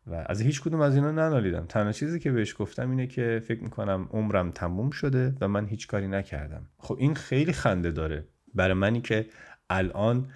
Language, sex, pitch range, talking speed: Persian, male, 85-115 Hz, 190 wpm